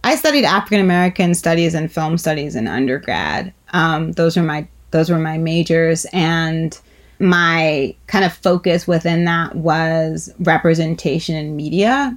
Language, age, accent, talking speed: English, 30-49, American, 145 wpm